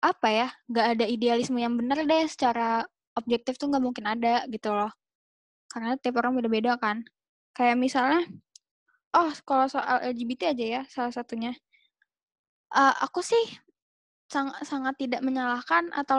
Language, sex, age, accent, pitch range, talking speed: Indonesian, female, 10-29, native, 235-285 Hz, 145 wpm